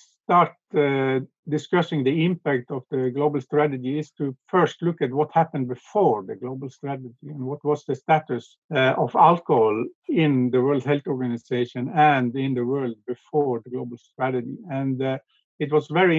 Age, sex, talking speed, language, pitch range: 50-69, male, 170 wpm, English, 130-155 Hz